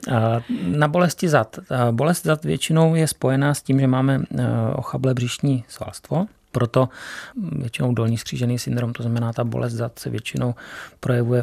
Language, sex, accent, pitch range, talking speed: Czech, male, native, 115-130 Hz, 145 wpm